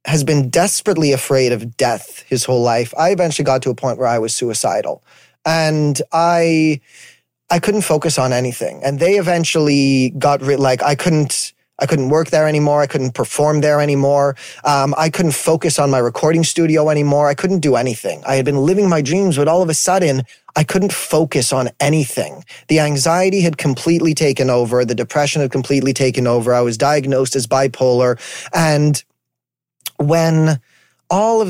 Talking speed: 180 wpm